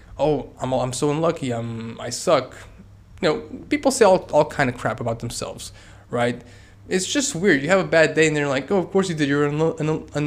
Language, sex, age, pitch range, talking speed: English, male, 20-39, 120-160 Hz, 230 wpm